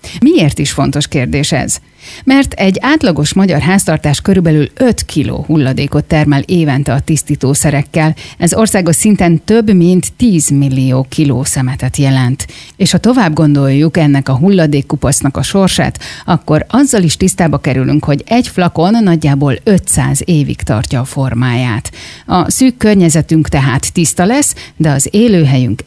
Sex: female